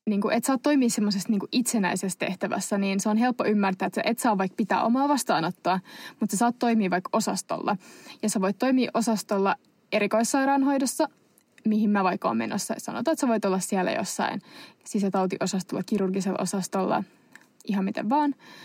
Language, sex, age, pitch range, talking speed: Finnish, female, 20-39, 195-230 Hz, 160 wpm